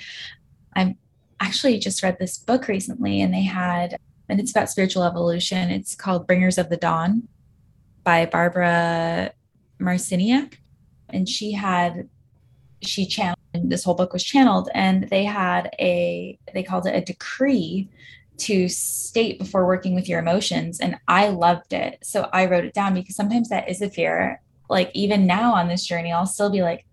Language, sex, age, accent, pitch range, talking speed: English, female, 10-29, American, 175-200 Hz, 165 wpm